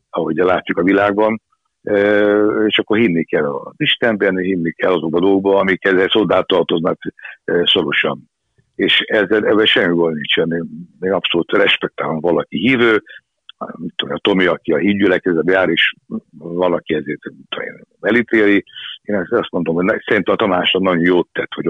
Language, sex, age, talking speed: Hungarian, male, 60-79, 145 wpm